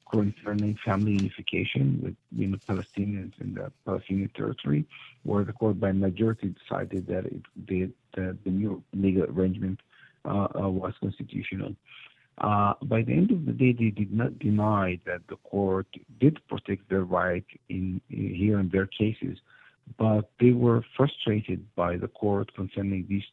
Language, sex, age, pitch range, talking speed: English, male, 50-69, 95-110 Hz, 155 wpm